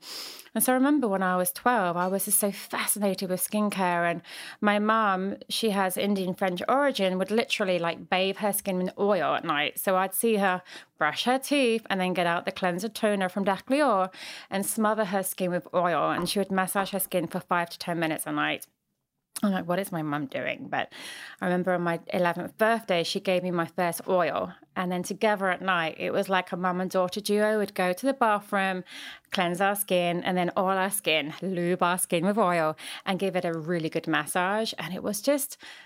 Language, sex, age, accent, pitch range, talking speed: English, female, 30-49, British, 180-210 Hz, 220 wpm